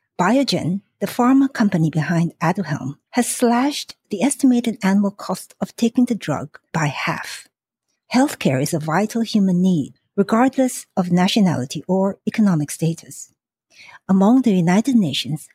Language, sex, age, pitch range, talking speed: English, female, 60-79, 170-245 Hz, 130 wpm